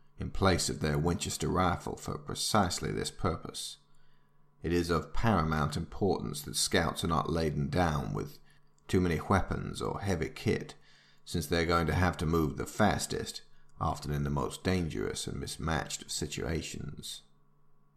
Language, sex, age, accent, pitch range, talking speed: English, male, 40-59, British, 75-90 Hz, 155 wpm